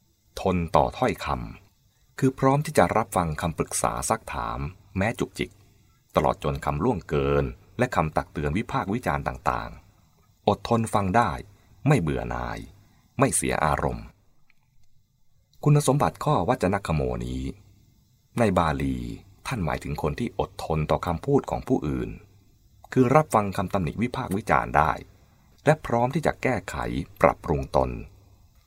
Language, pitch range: English, 75-110 Hz